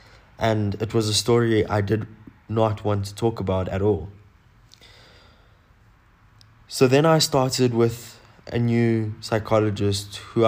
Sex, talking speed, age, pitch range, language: male, 130 wpm, 20-39, 100-115 Hz, English